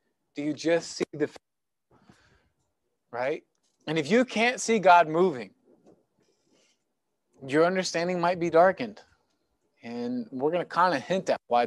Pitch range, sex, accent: 140-190 Hz, male, American